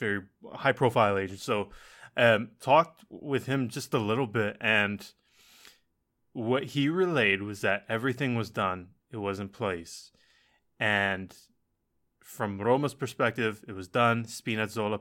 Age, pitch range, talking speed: 20-39, 100-125 Hz, 130 wpm